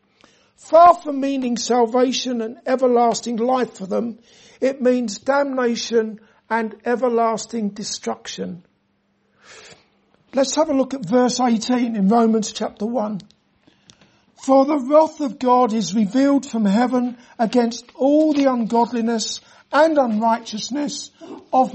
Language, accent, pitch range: English, British, 220-265 Hz